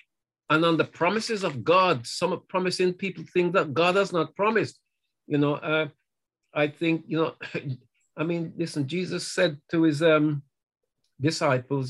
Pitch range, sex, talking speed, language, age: 145-175 Hz, male, 155 wpm, English, 50-69